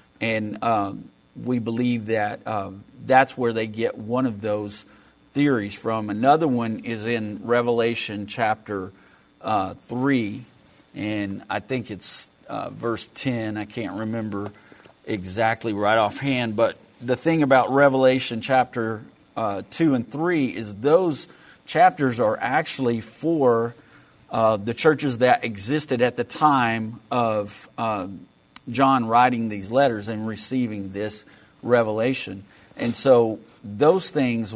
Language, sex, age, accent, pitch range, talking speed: English, male, 50-69, American, 105-130 Hz, 130 wpm